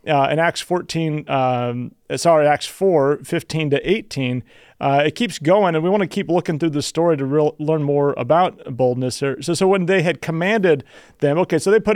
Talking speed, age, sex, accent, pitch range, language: 205 wpm, 40-59, male, American, 135-170 Hz, English